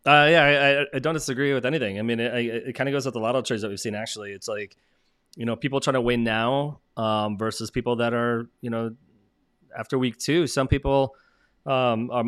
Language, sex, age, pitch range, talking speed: English, male, 20-39, 105-130 Hz, 230 wpm